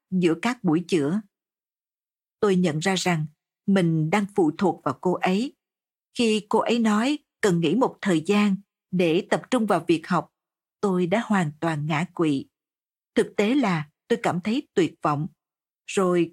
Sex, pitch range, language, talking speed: female, 175-220 Hz, Vietnamese, 165 wpm